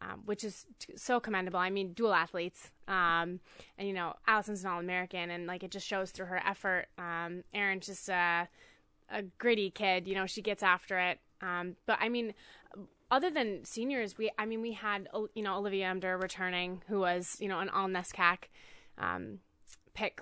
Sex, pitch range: female, 180-210 Hz